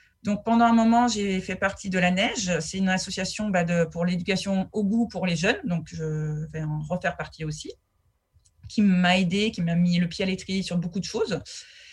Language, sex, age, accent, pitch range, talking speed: French, female, 30-49, French, 160-205 Hz, 215 wpm